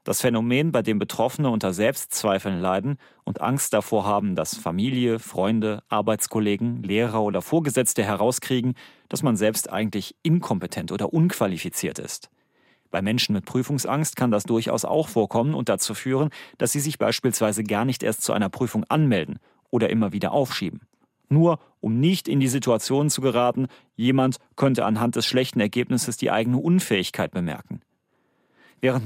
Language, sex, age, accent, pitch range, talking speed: German, male, 40-59, German, 110-140 Hz, 155 wpm